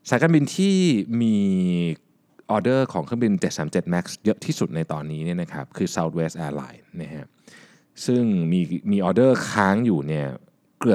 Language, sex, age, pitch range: Thai, male, 20-39, 85-130 Hz